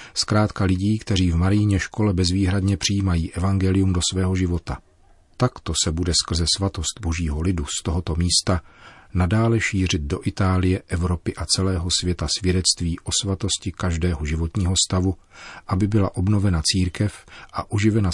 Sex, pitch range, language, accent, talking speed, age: male, 85-100 Hz, Czech, native, 140 wpm, 40-59